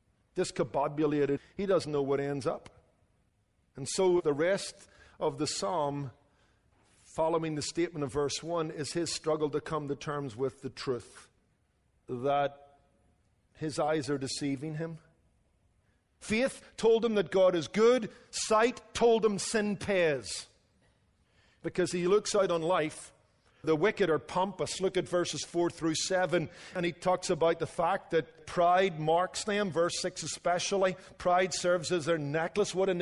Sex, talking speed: male, 155 wpm